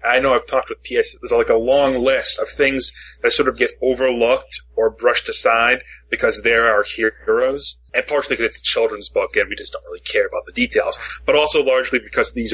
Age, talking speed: 30-49, 220 wpm